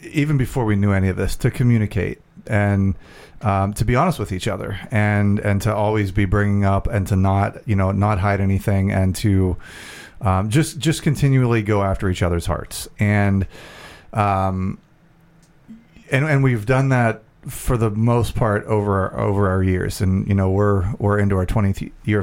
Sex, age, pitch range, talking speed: male, 30-49, 100-125 Hz, 185 wpm